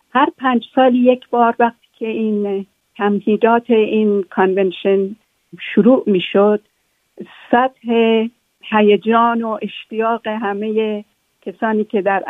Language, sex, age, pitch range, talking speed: Persian, female, 50-69, 200-235 Hz, 105 wpm